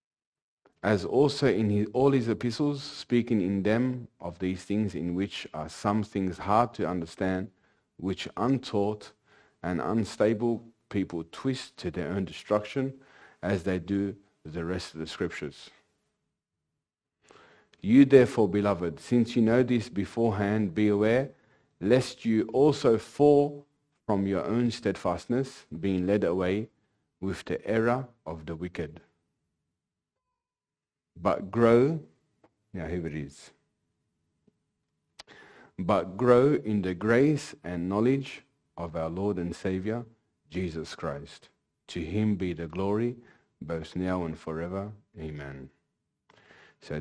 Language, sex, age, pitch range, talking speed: English, male, 40-59, 90-120 Hz, 125 wpm